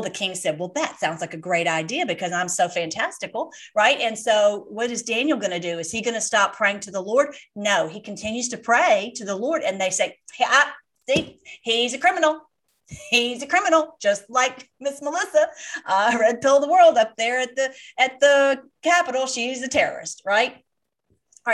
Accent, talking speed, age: American, 200 wpm, 40-59